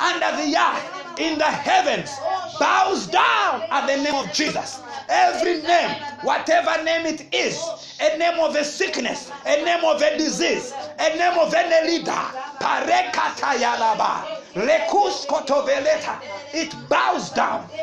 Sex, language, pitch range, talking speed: male, English, 260-325 Hz, 125 wpm